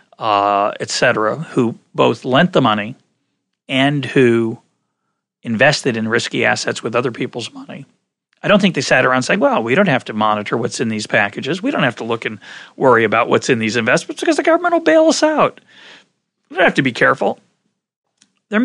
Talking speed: 195 wpm